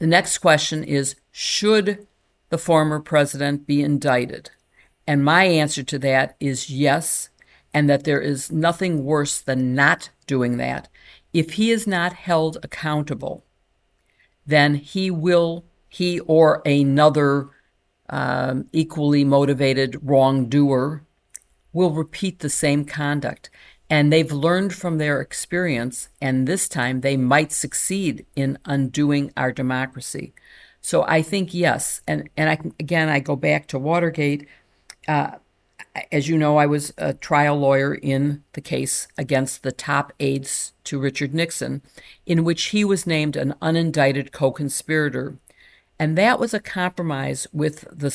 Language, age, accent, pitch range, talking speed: English, 50-69, American, 140-165 Hz, 140 wpm